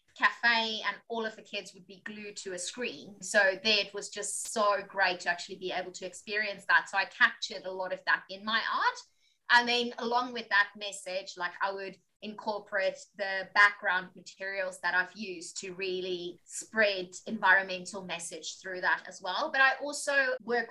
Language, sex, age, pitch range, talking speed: English, female, 20-39, 185-215 Hz, 190 wpm